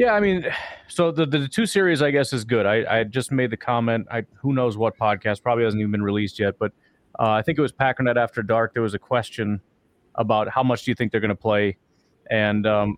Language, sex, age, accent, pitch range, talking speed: English, male, 30-49, American, 110-135 Hz, 250 wpm